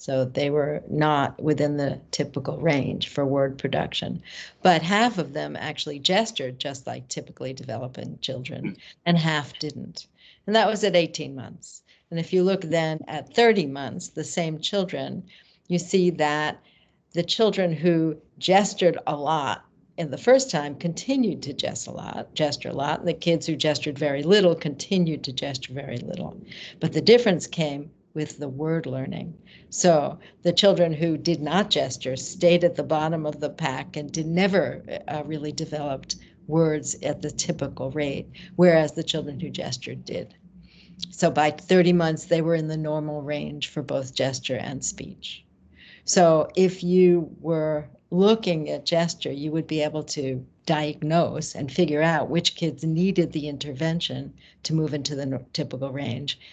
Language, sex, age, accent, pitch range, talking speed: English, female, 60-79, American, 145-175 Hz, 160 wpm